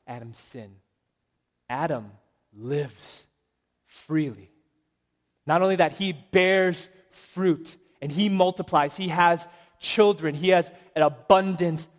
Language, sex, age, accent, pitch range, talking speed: English, male, 20-39, American, 120-180 Hz, 105 wpm